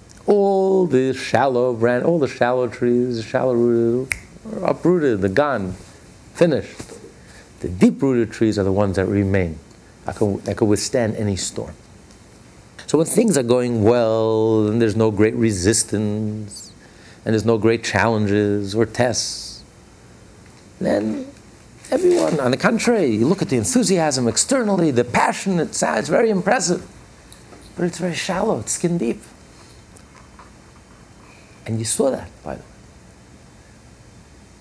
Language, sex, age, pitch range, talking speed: English, male, 50-69, 100-125 Hz, 135 wpm